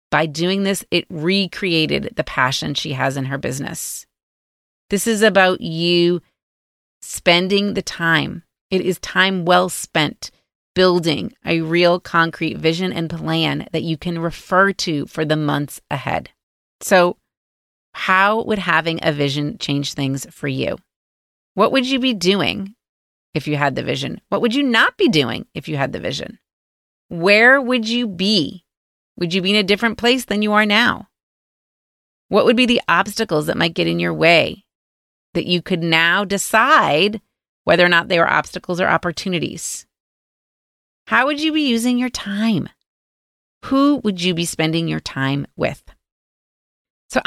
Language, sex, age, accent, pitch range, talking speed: English, female, 30-49, American, 155-205 Hz, 160 wpm